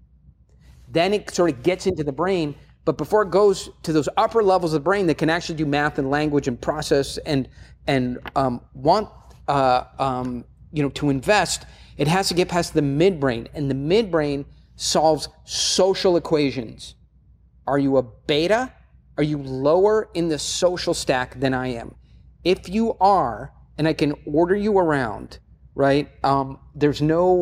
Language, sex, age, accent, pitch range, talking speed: English, male, 30-49, American, 135-180 Hz, 170 wpm